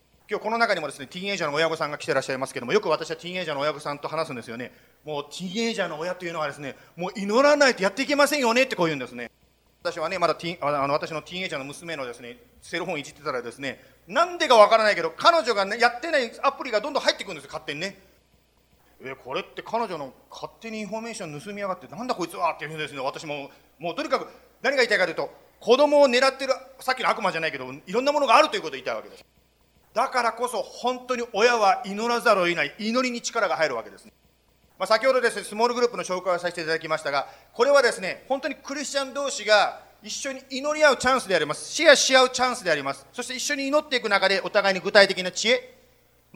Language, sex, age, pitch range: Japanese, male, 40-59, 160-255 Hz